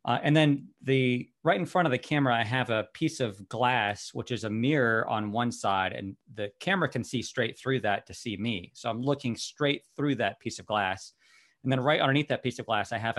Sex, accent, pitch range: male, American, 100-125 Hz